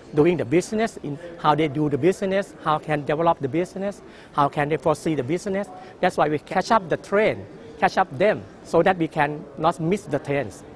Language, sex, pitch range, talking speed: English, male, 130-155 Hz, 220 wpm